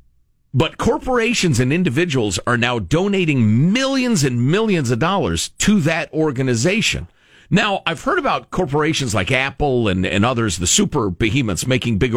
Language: English